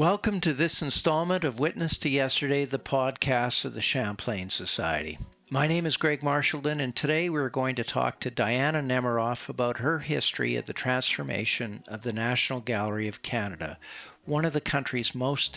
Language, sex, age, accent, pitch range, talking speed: English, male, 50-69, American, 120-150 Hz, 175 wpm